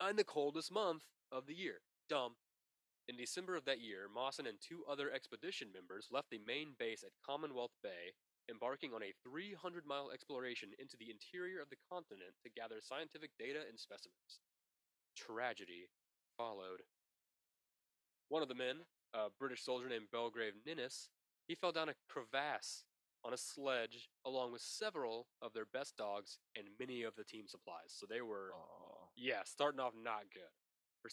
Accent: American